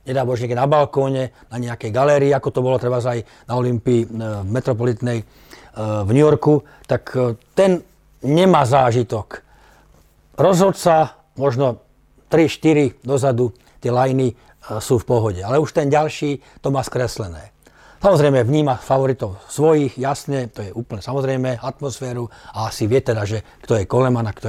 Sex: male